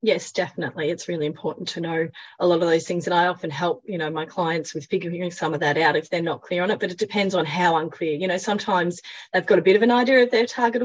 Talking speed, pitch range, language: 280 wpm, 165-205 Hz, English